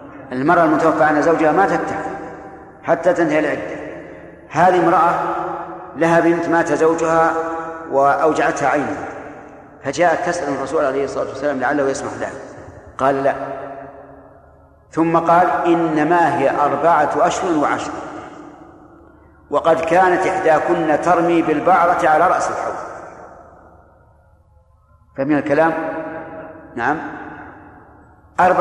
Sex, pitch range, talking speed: male, 140-170 Hz, 100 wpm